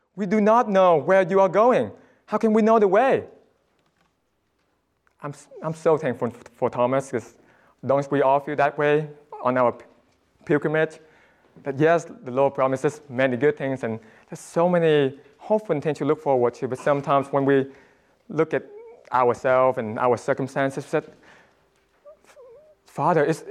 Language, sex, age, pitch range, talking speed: English, male, 20-39, 125-170 Hz, 160 wpm